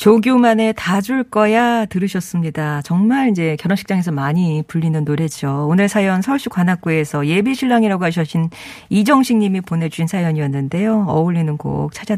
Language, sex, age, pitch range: Korean, female, 40-59, 165-240 Hz